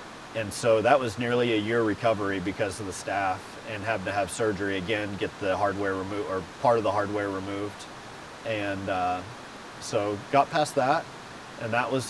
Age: 30-49